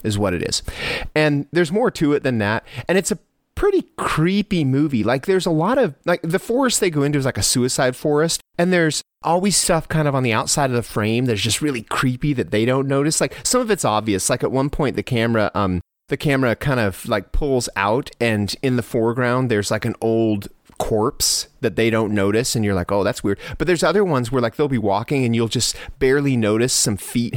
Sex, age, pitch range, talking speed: male, 30-49, 110-160 Hz, 235 wpm